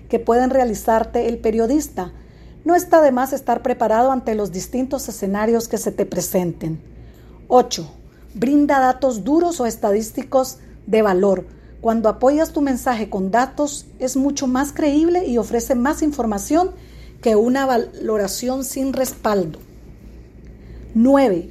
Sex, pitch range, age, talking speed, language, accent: female, 210-270 Hz, 40-59, 130 wpm, Spanish, American